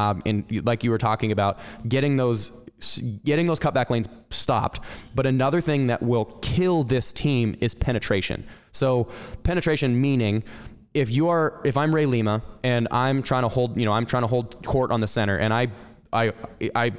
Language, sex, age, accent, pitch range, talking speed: English, male, 10-29, American, 110-135 Hz, 185 wpm